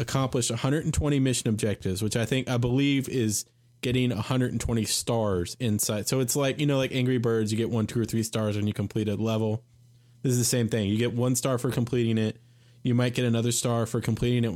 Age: 20-39